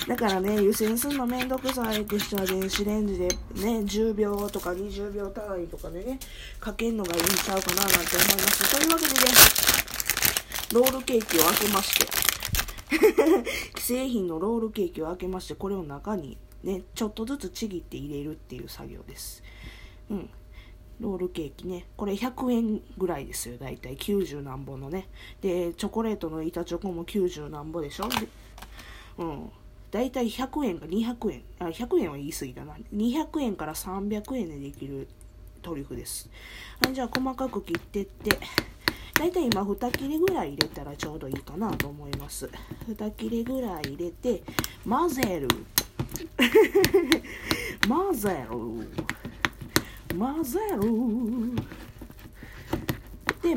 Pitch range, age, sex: 170-245 Hz, 20-39, female